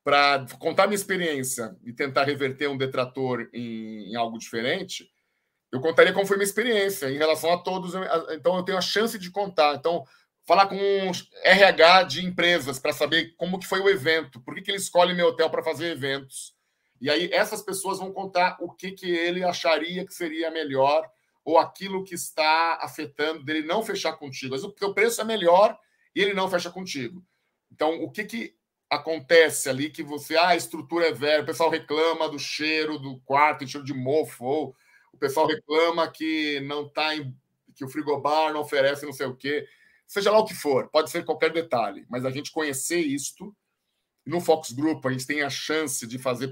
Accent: Brazilian